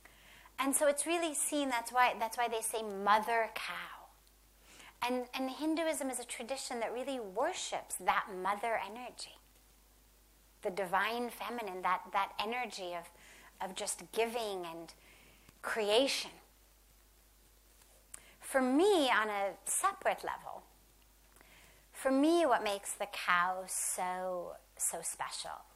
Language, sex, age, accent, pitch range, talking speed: English, female, 30-49, American, 205-285 Hz, 120 wpm